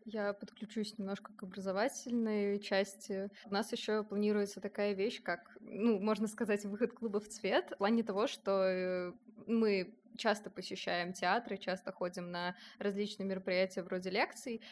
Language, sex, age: Russian, female, 20-39